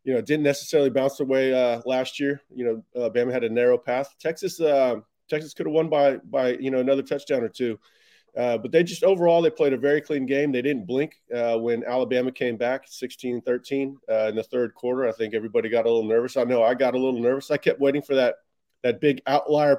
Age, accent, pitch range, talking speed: 30-49, American, 120-140 Hz, 235 wpm